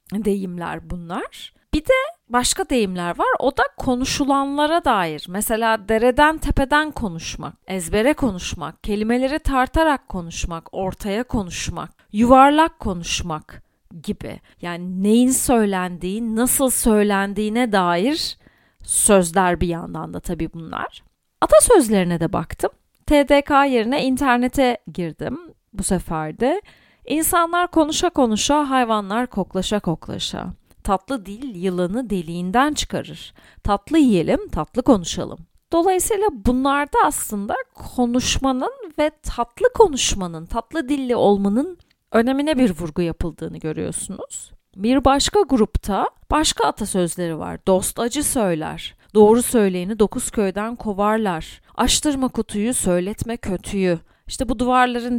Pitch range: 190-270 Hz